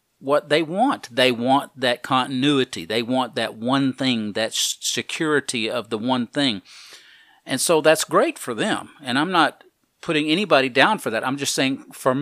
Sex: male